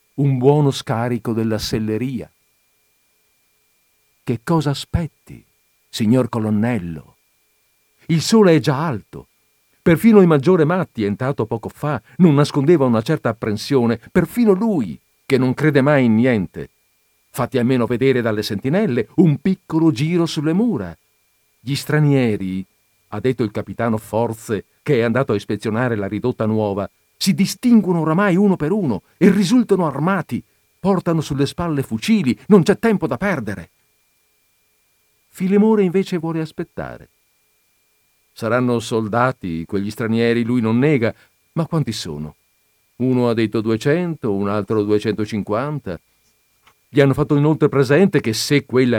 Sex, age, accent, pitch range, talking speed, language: male, 50-69, native, 110-160 Hz, 130 wpm, Italian